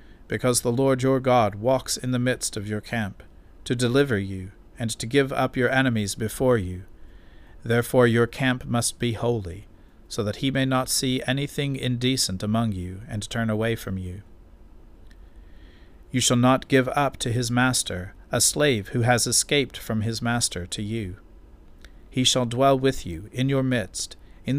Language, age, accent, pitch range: English, 40-59, American, 95-125 Hz